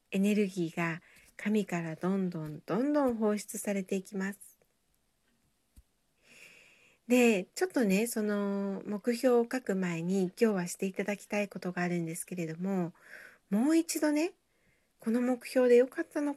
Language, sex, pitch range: Japanese, female, 180-260 Hz